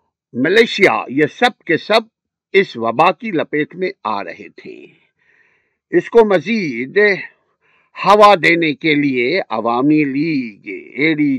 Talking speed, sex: 120 wpm, male